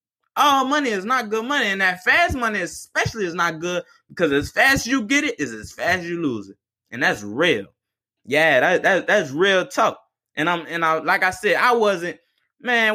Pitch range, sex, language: 175-260 Hz, male, English